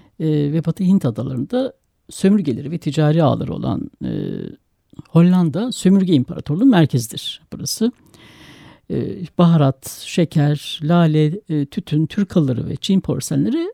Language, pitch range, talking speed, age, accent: Turkish, 150-220 Hz, 110 wpm, 60-79, native